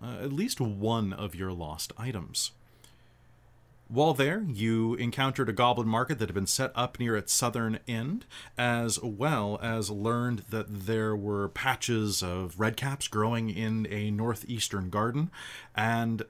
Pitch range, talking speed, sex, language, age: 105-125 Hz, 145 wpm, male, English, 30-49